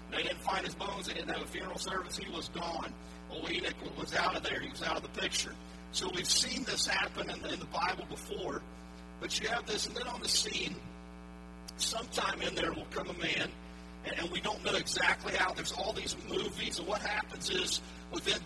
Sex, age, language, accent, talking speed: male, 50-69, English, American, 225 wpm